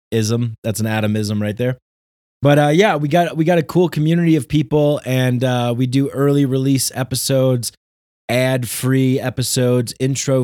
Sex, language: male, English